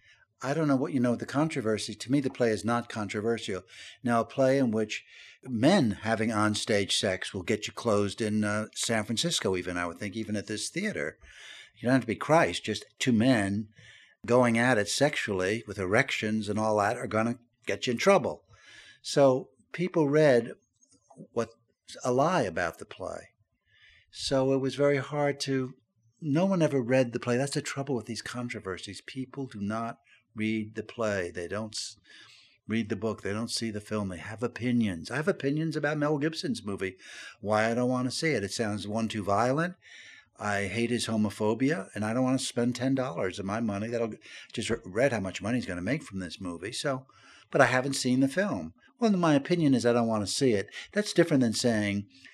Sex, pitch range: male, 105-135 Hz